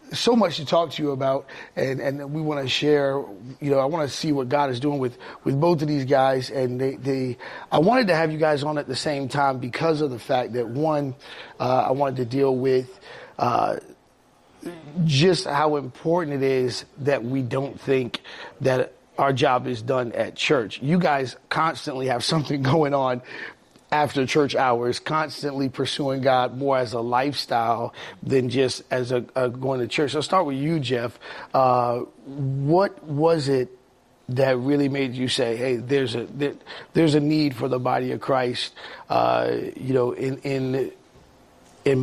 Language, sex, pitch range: English, male, 130-150 Hz